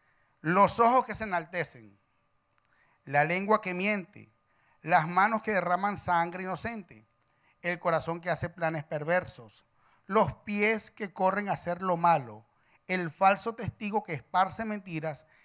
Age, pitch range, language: 40-59, 145-195 Hz, English